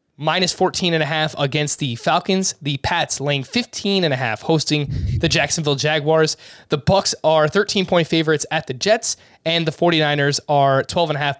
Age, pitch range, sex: 20-39, 135-160 Hz, male